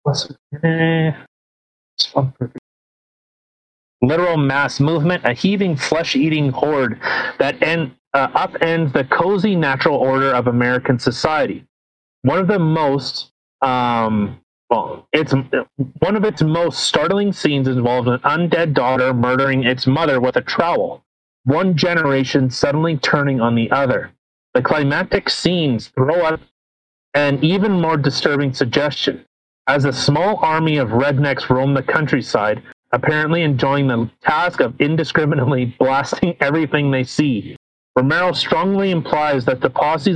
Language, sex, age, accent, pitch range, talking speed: English, male, 30-49, American, 130-160 Hz, 125 wpm